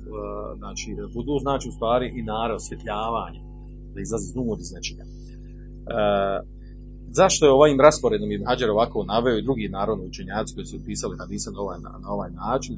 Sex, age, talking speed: male, 40-59, 145 wpm